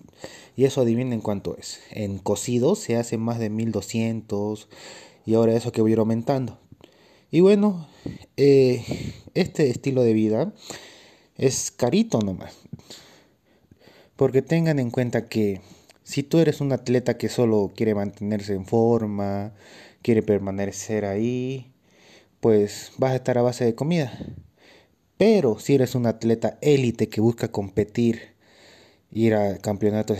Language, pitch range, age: Spanish, 105-125 Hz, 30-49